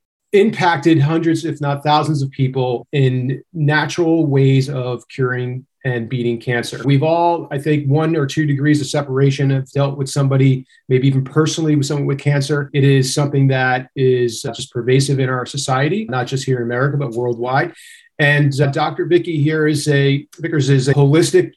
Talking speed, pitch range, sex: 180 wpm, 130-150 Hz, male